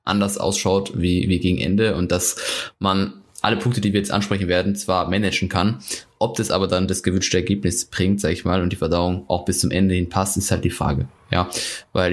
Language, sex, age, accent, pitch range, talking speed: German, male, 20-39, German, 90-100 Hz, 225 wpm